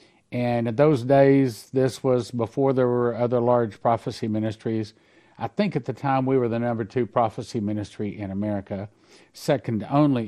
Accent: American